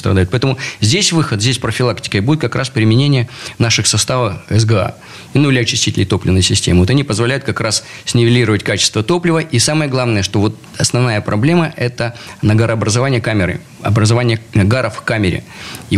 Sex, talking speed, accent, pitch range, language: male, 150 wpm, native, 105-130 Hz, Russian